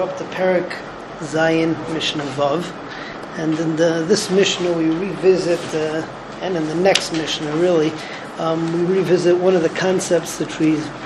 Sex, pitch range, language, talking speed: male, 170-195 Hz, English, 155 wpm